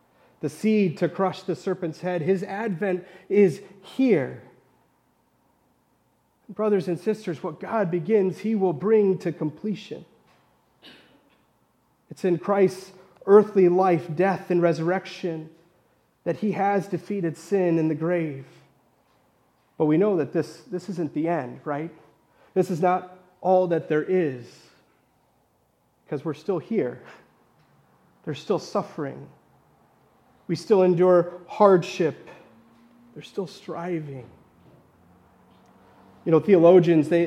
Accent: American